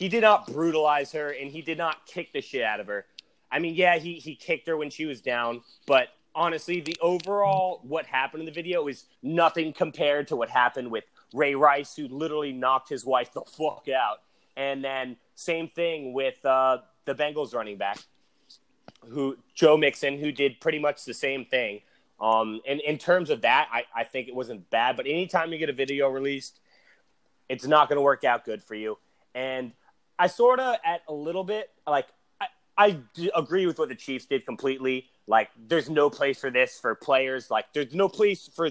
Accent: American